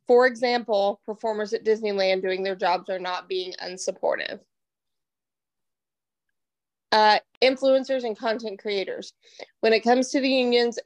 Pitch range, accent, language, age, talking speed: 195-225 Hz, American, English, 20-39, 125 wpm